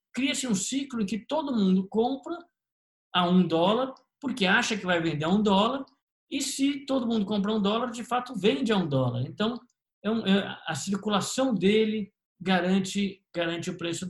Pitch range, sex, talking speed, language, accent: 140-220 Hz, male, 185 wpm, Portuguese, Brazilian